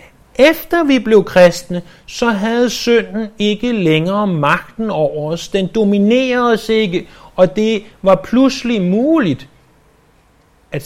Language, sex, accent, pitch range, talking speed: Danish, male, native, 175-235 Hz, 120 wpm